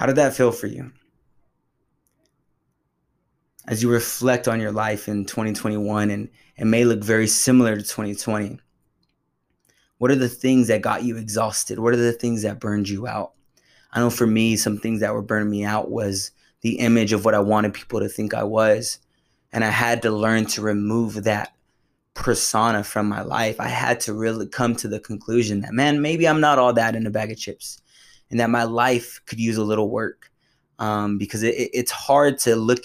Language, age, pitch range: English, 20-39, 105-120 Hz